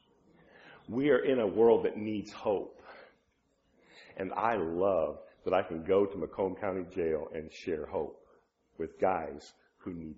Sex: male